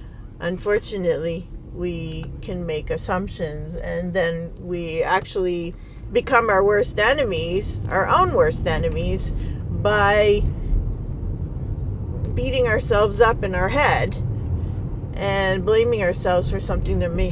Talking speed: 105 wpm